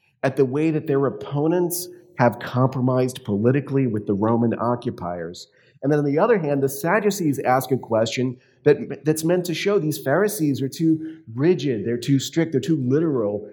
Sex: male